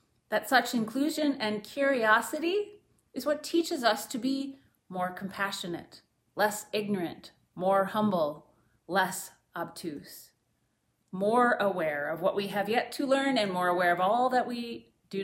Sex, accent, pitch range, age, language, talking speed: female, American, 170-240 Hz, 30-49, English, 140 wpm